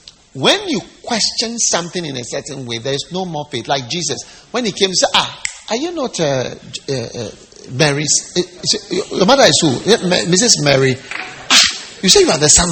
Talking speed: 200 wpm